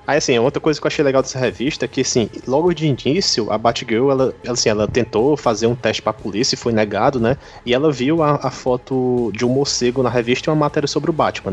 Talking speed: 245 wpm